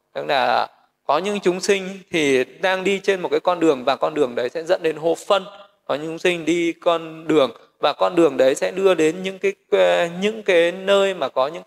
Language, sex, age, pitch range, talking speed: Vietnamese, male, 20-39, 155-190 Hz, 230 wpm